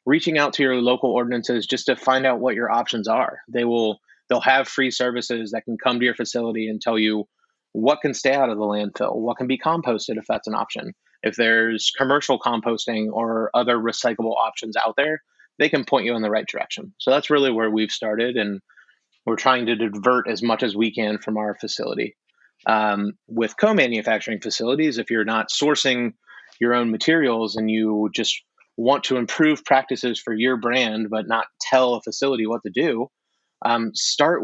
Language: English